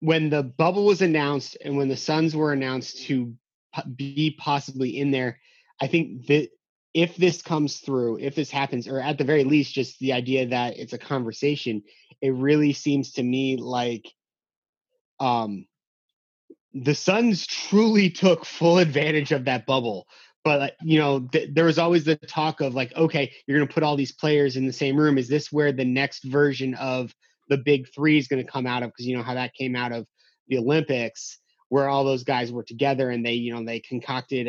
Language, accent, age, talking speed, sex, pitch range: English, American, 30-49, 200 wpm, male, 125-150 Hz